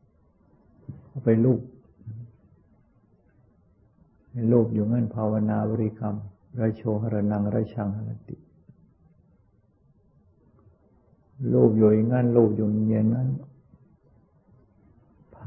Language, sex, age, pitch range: Thai, male, 60-79, 105-120 Hz